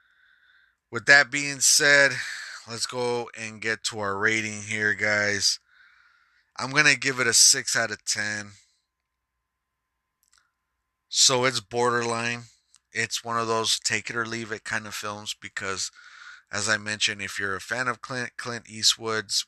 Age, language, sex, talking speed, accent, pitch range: 30-49, English, male, 155 wpm, American, 105-125 Hz